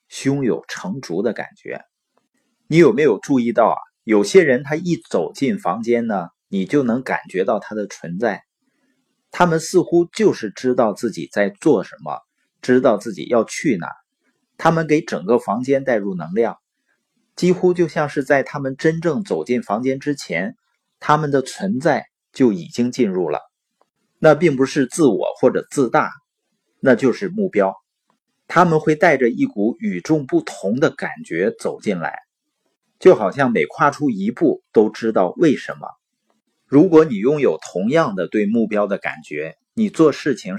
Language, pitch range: Chinese, 130-190 Hz